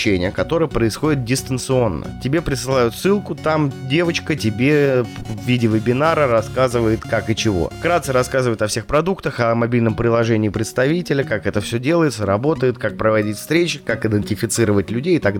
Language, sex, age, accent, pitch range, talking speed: Russian, male, 20-39, native, 110-145 Hz, 150 wpm